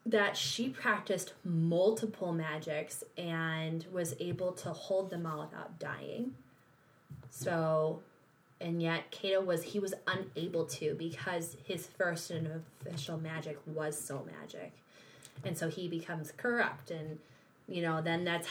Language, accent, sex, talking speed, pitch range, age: English, American, female, 135 wpm, 160-210 Hz, 20-39